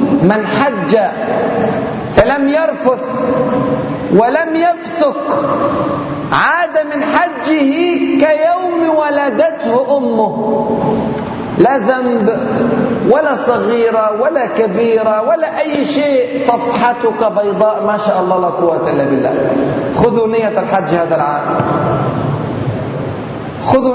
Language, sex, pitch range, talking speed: Arabic, male, 220-275 Hz, 90 wpm